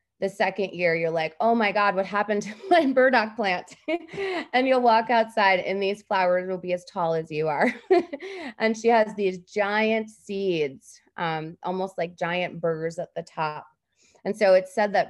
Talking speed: 185 wpm